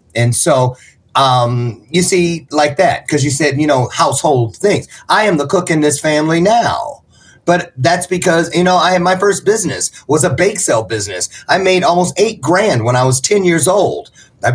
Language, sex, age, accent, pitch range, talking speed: English, male, 40-59, American, 125-175 Hz, 200 wpm